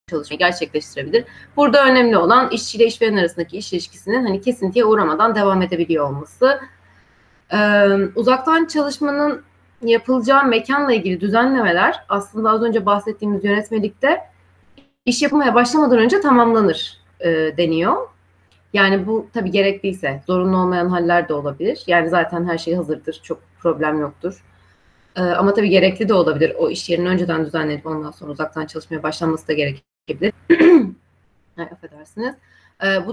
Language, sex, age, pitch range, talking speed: Turkish, female, 30-49, 160-240 Hz, 130 wpm